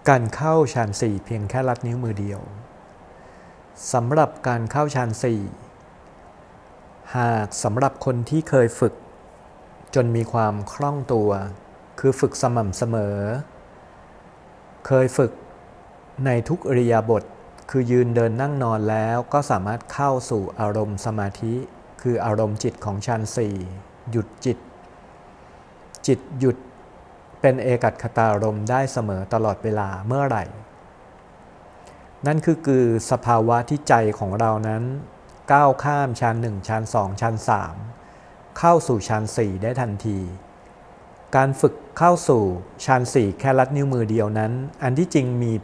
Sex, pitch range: male, 105-130 Hz